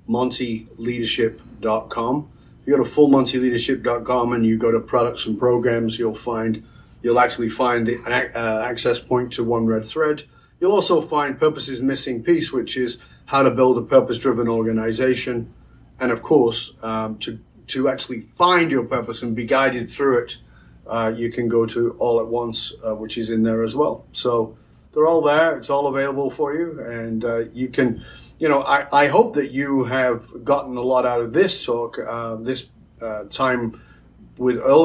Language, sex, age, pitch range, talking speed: English, male, 40-59, 120-150 Hz, 185 wpm